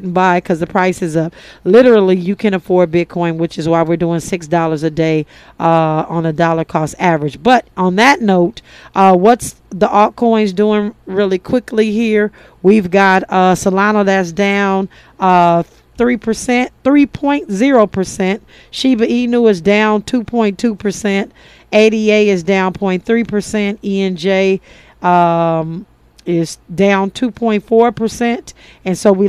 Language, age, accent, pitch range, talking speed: English, 40-59, American, 175-215 Hz, 155 wpm